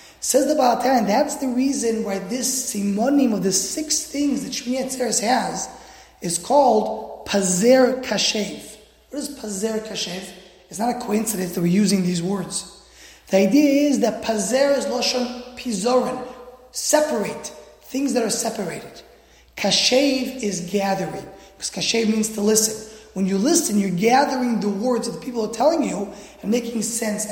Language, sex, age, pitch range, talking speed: English, male, 30-49, 210-270 Hz, 155 wpm